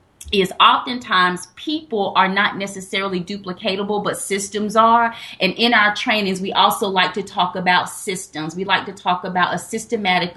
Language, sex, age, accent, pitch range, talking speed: English, female, 30-49, American, 195-250 Hz, 160 wpm